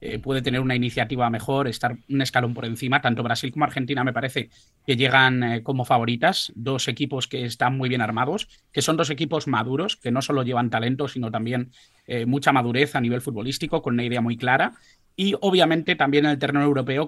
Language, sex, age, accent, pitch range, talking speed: Spanish, male, 30-49, Spanish, 125-145 Hz, 205 wpm